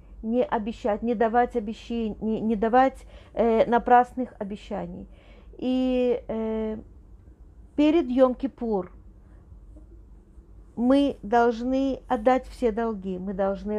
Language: Russian